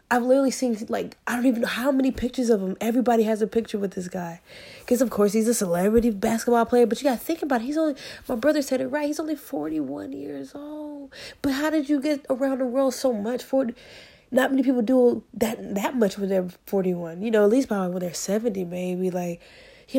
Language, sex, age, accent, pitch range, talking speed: English, female, 20-39, American, 195-255 Hz, 235 wpm